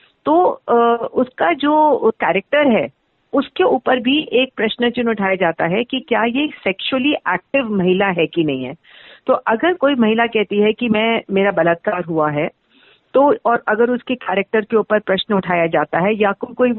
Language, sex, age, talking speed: Hindi, female, 50-69, 175 wpm